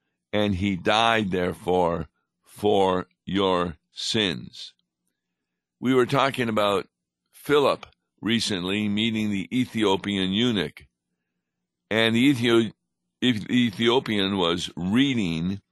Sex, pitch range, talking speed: male, 95-115 Hz, 85 wpm